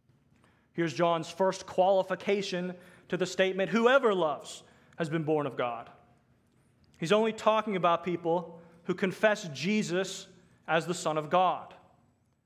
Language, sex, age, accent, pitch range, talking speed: English, male, 30-49, American, 155-195 Hz, 130 wpm